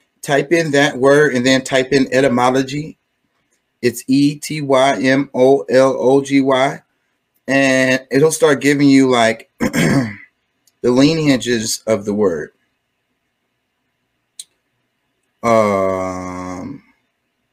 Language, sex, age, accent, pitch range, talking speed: English, male, 30-49, American, 95-130 Hz, 105 wpm